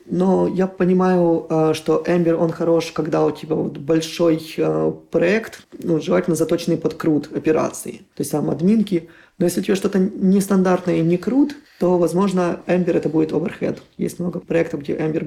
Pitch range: 165-195 Hz